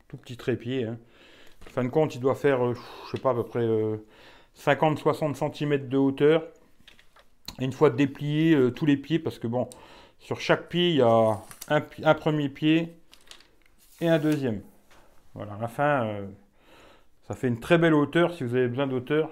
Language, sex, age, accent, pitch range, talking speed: French, male, 40-59, French, 115-150 Hz, 170 wpm